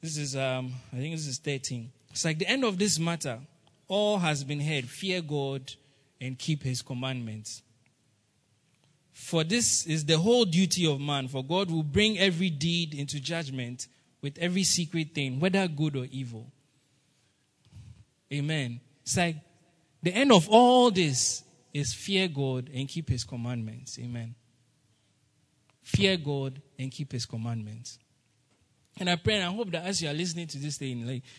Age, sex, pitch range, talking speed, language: 20-39, male, 130-170 Hz, 165 wpm, English